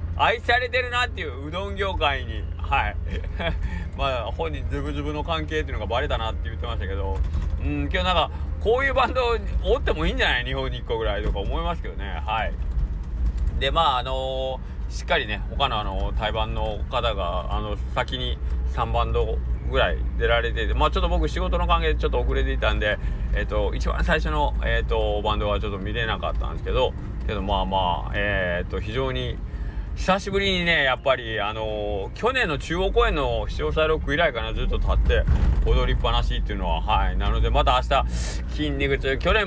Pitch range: 70-105 Hz